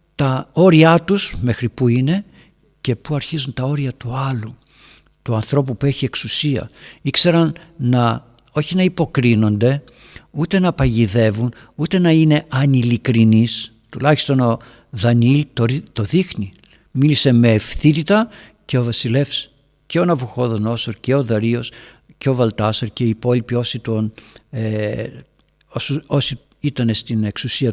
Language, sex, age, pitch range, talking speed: Greek, male, 60-79, 115-150 Hz, 130 wpm